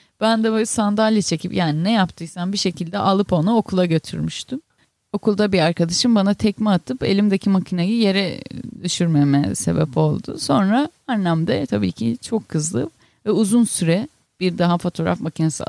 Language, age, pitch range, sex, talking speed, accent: Turkish, 30-49, 160-220 Hz, female, 155 wpm, native